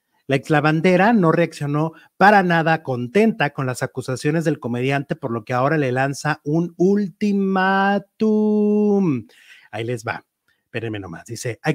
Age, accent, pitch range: 30-49, Mexican, 135-175 Hz